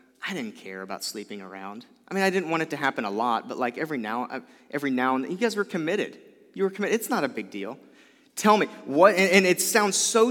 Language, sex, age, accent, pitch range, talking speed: English, male, 30-49, American, 130-195 Hz, 255 wpm